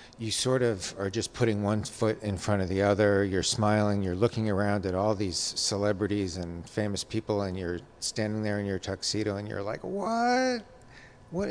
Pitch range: 95-115 Hz